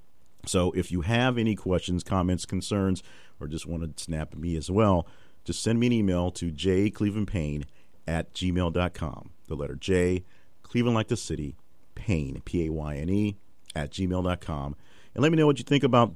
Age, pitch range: 50-69, 80-105 Hz